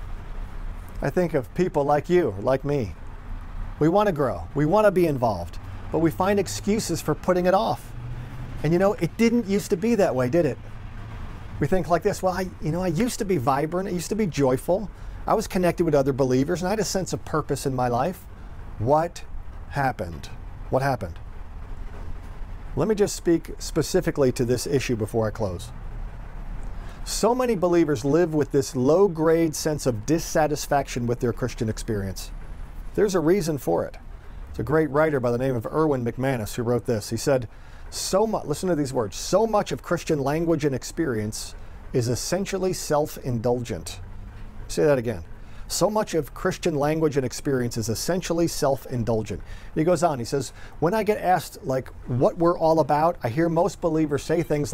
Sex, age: male, 50-69